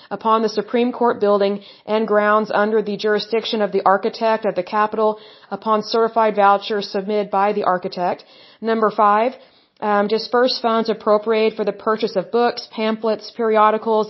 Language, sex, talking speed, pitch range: Hindi, female, 160 wpm, 205-230 Hz